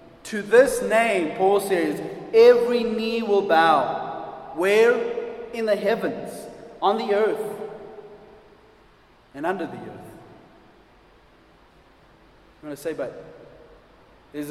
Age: 30-49